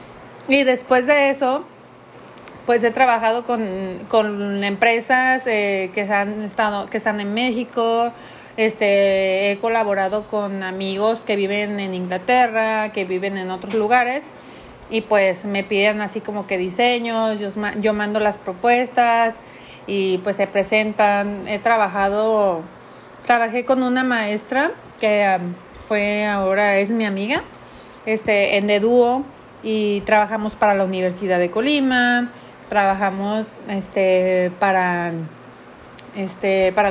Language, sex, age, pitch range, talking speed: Spanish, female, 30-49, 200-235 Hz, 120 wpm